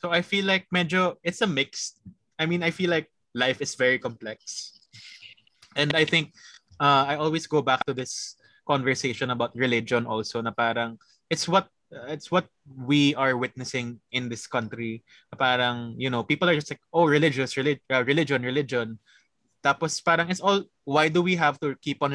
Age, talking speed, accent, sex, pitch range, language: 20-39, 180 wpm, Filipino, male, 115-150 Hz, English